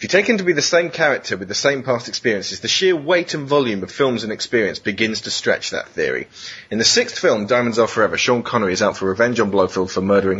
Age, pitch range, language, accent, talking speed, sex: 30-49, 105-145 Hz, English, British, 260 wpm, male